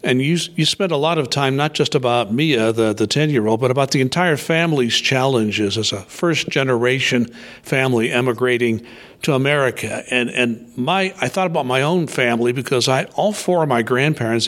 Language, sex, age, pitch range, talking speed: English, male, 60-79, 120-155 Hz, 185 wpm